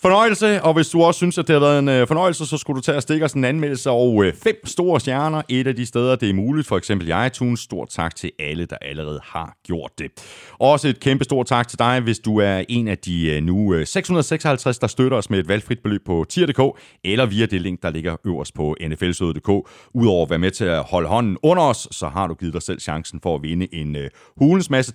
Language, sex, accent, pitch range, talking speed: Danish, male, native, 85-135 Hz, 245 wpm